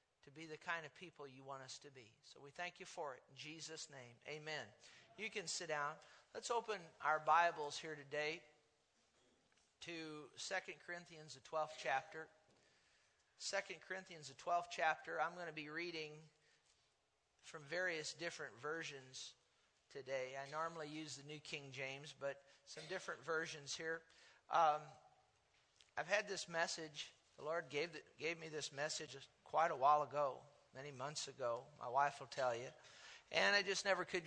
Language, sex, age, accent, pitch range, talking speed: English, male, 50-69, American, 150-175 Hz, 165 wpm